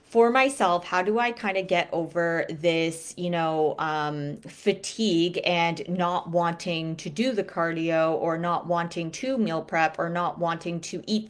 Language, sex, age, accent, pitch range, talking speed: English, female, 30-49, American, 160-190 Hz, 170 wpm